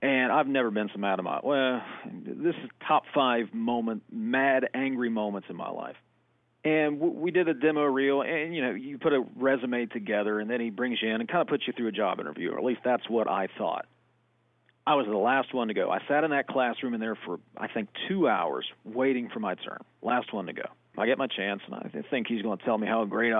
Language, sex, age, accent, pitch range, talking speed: English, male, 40-59, American, 115-160 Hz, 250 wpm